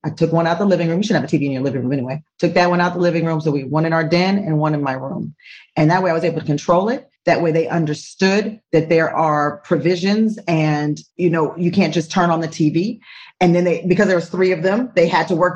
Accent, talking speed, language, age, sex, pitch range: American, 295 wpm, English, 40-59, female, 175-250 Hz